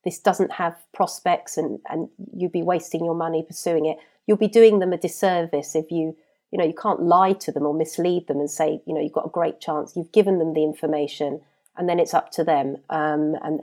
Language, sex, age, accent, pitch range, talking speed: English, female, 40-59, British, 160-205 Hz, 235 wpm